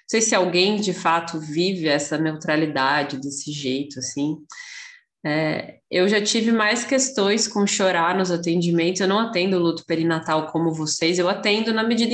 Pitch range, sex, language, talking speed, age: 155-190 Hz, female, Portuguese, 160 wpm, 20-39